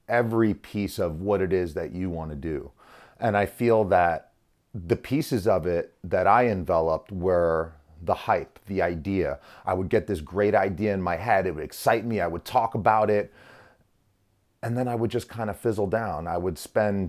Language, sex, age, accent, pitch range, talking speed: English, male, 30-49, American, 90-110 Hz, 200 wpm